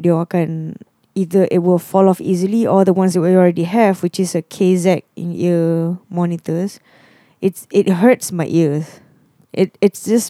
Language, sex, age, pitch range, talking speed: English, female, 20-39, 170-205 Hz, 155 wpm